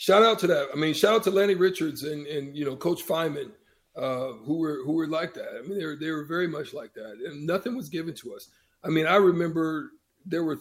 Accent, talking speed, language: American, 260 wpm, English